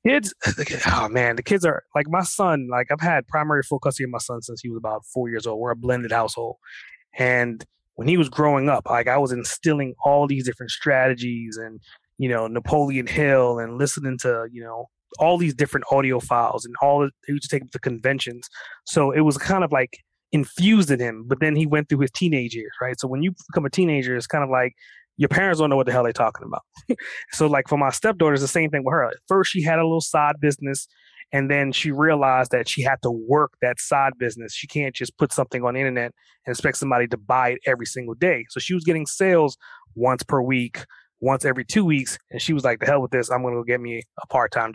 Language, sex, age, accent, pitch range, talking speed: English, male, 20-39, American, 125-155 Hz, 245 wpm